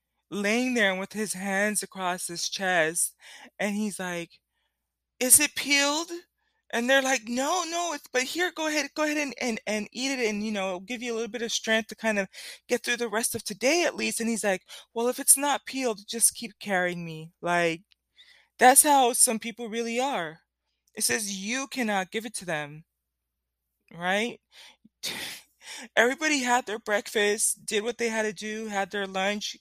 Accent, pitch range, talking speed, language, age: American, 185-240 Hz, 190 wpm, English, 20-39